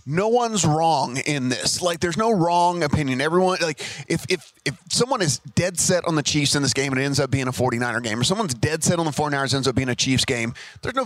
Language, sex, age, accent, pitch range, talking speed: English, male, 30-49, American, 135-160 Hz, 255 wpm